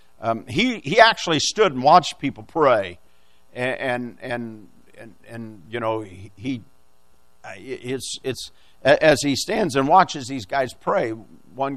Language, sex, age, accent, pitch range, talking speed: English, male, 50-69, American, 90-135 Hz, 145 wpm